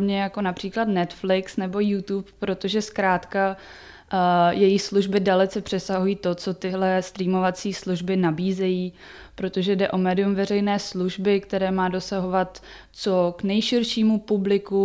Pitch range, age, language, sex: 185-210 Hz, 20-39, Czech, female